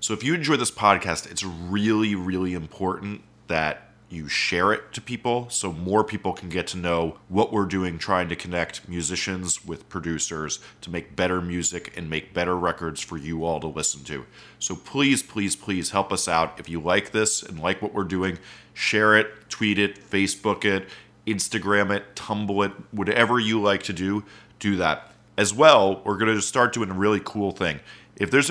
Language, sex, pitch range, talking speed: English, male, 90-110 Hz, 195 wpm